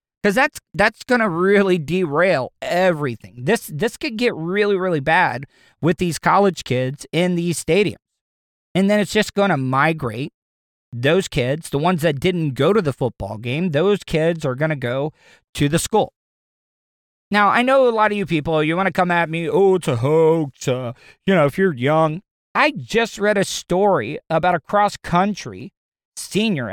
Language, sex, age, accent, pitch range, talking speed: English, male, 40-59, American, 150-195 Hz, 185 wpm